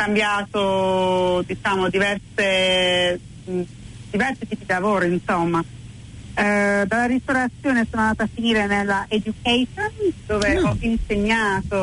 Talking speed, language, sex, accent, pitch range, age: 105 wpm, Italian, female, native, 170-215 Hz, 30-49